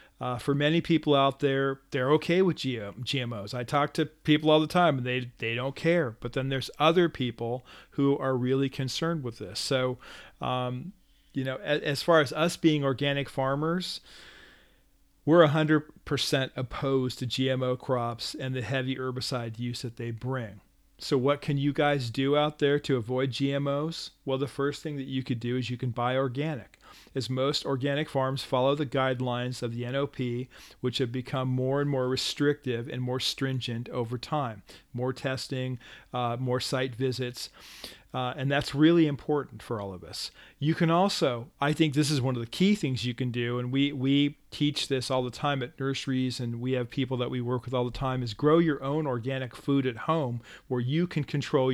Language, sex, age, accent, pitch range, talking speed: English, male, 40-59, American, 125-145 Hz, 195 wpm